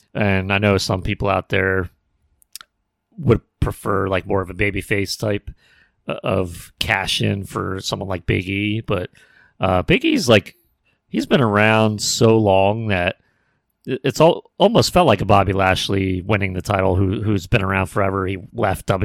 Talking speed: 165 wpm